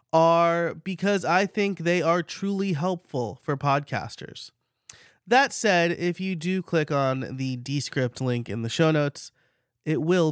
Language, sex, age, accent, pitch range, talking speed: English, male, 30-49, American, 135-190 Hz, 150 wpm